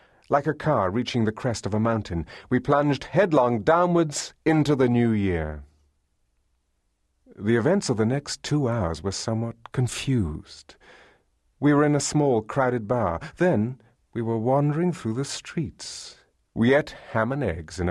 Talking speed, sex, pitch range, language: 160 wpm, male, 90-130 Hz, English